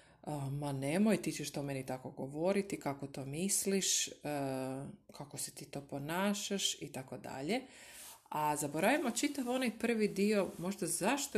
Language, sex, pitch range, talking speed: Croatian, female, 145-185 Hz, 140 wpm